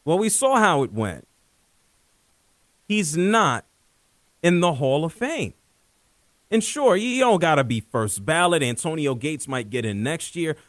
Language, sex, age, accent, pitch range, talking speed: English, male, 40-59, American, 140-230 Hz, 165 wpm